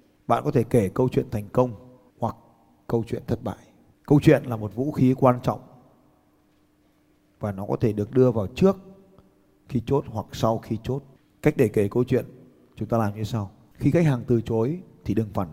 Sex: male